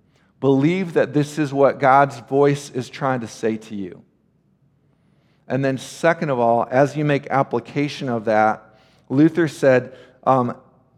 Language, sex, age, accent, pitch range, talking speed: English, male, 50-69, American, 135-170 Hz, 150 wpm